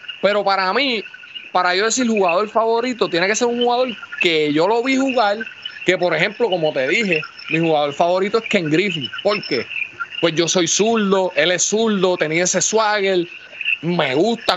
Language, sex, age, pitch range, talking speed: Spanish, male, 30-49, 170-240 Hz, 180 wpm